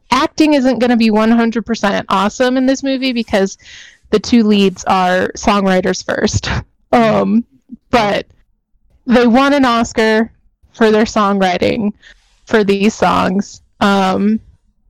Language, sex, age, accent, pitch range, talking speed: English, female, 20-39, American, 200-245 Hz, 120 wpm